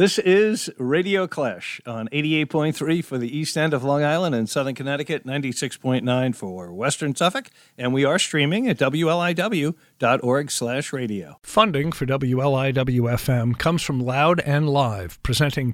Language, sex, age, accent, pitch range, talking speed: English, male, 50-69, American, 130-175 Hz, 140 wpm